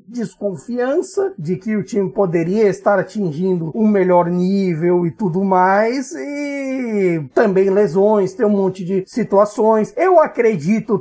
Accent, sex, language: Brazilian, male, Portuguese